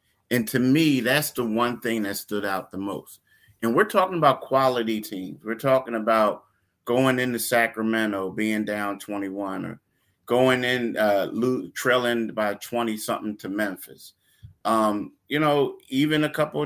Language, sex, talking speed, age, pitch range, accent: English, male, 150 wpm, 30-49, 110-130 Hz, American